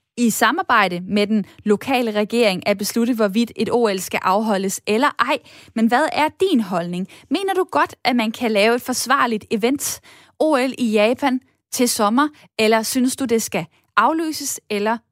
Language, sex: Danish, female